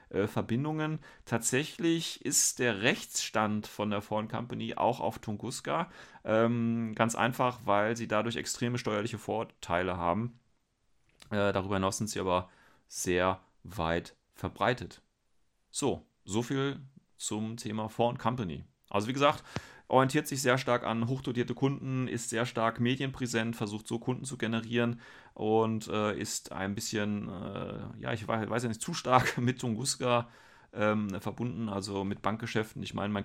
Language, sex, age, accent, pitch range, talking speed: German, male, 30-49, German, 100-120 Hz, 145 wpm